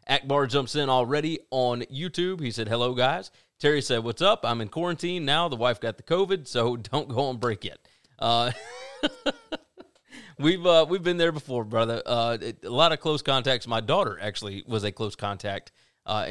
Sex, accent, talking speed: male, American, 190 wpm